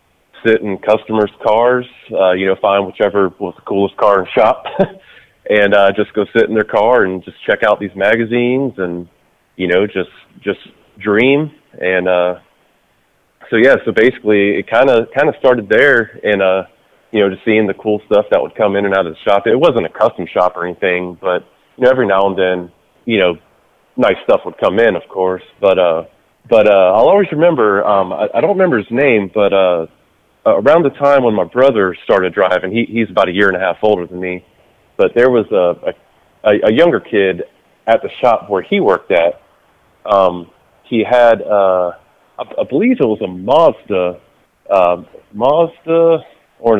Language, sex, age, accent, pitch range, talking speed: English, male, 30-49, American, 95-115 Hz, 200 wpm